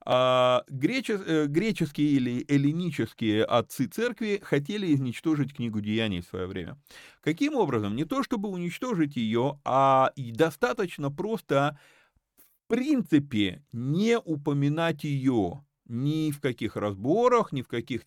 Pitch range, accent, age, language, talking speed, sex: 120-175 Hz, native, 30-49, Russian, 115 wpm, male